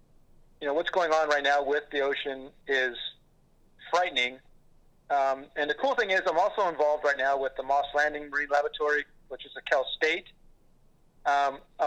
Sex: male